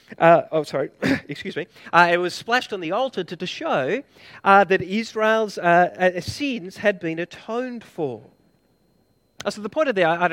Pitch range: 165-210 Hz